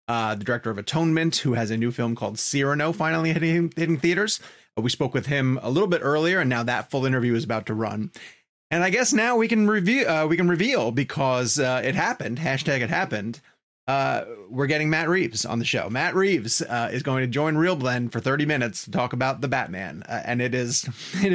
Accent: American